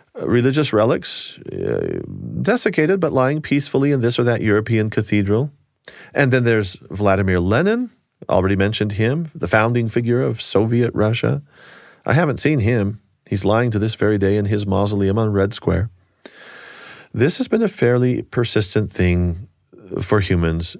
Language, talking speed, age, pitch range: English, 150 wpm, 40-59, 95-120 Hz